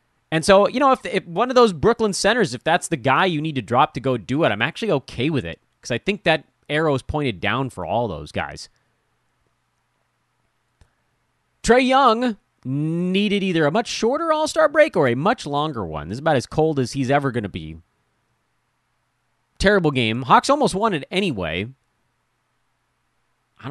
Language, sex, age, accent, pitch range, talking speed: English, male, 30-49, American, 115-185 Hz, 185 wpm